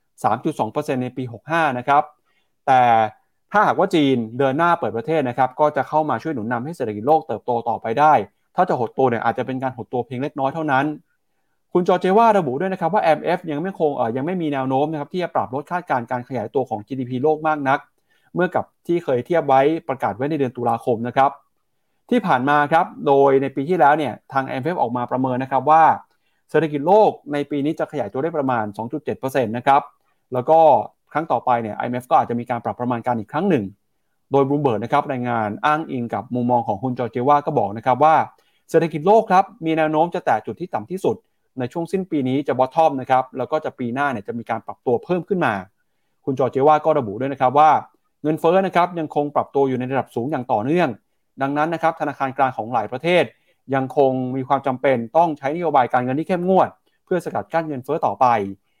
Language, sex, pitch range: Thai, male, 125-160 Hz